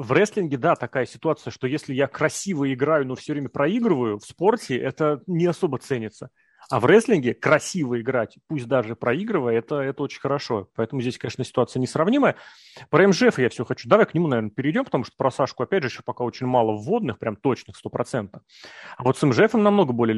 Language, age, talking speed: Russian, 30-49, 200 wpm